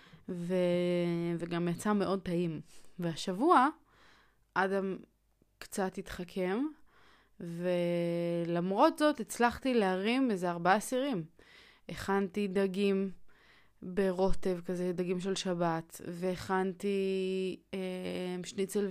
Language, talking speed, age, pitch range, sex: Hebrew, 85 wpm, 20-39, 180-205 Hz, female